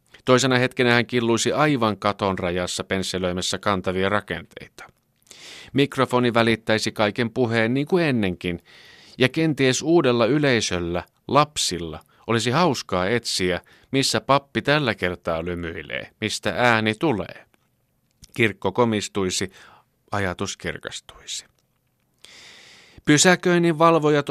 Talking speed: 95 wpm